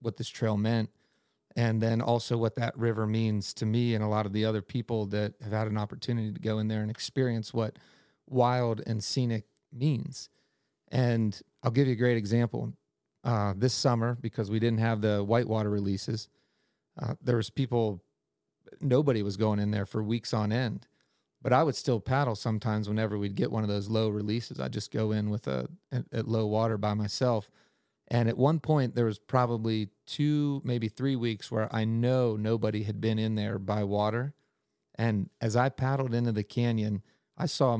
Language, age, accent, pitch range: English, 40-59, American, 110-125 Hz